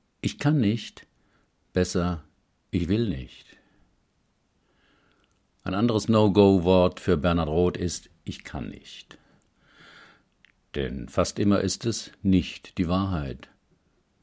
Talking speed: 105 wpm